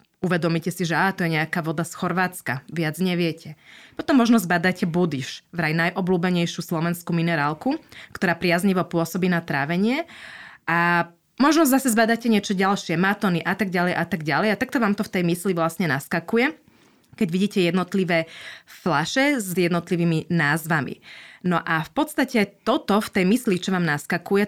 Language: Slovak